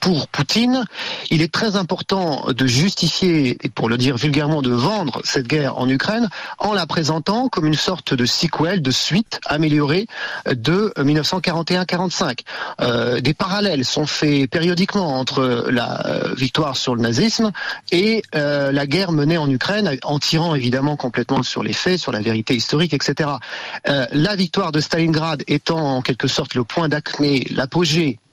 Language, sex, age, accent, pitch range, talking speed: French, male, 40-59, French, 135-180 Hz, 165 wpm